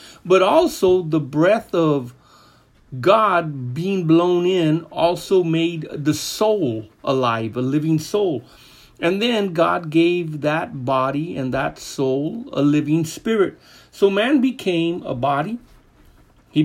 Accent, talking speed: American, 125 wpm